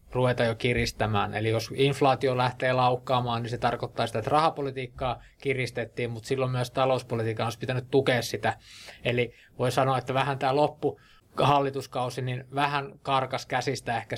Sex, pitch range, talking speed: male, 120-140 Hz, 150 wpm